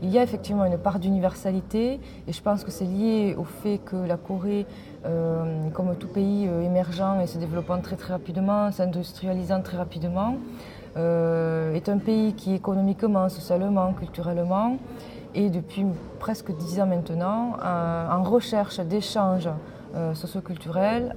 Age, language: 20-39, French